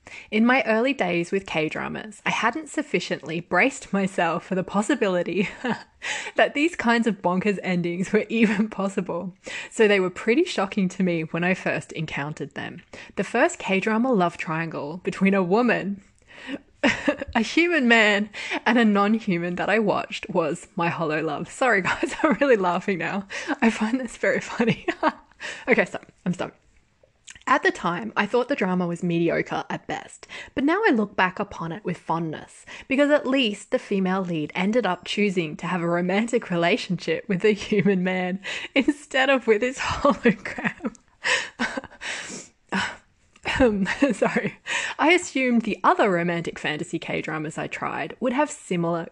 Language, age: English, 20-39